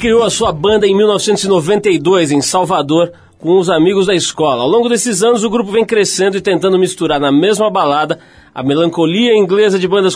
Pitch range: 145-195 Hz